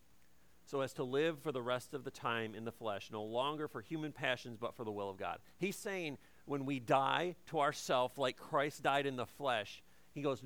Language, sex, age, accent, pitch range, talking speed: English, male, 40-59, American, 115-160 Hz, 225 wpm